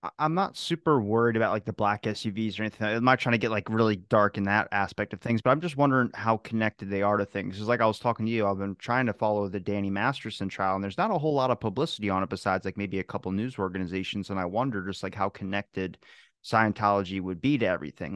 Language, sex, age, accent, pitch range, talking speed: English, male, 30-49, American, 100-125 Hz, 260 wpm